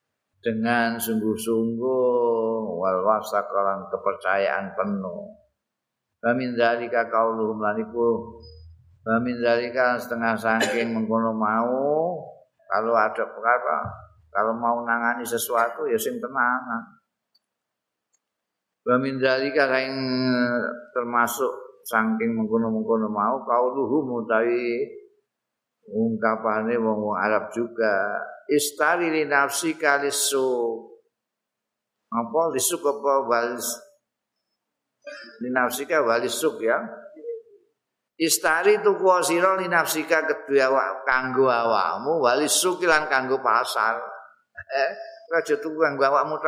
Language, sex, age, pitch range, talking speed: Indonesian, male, 50-69, 115-160 Hz, 90 wpm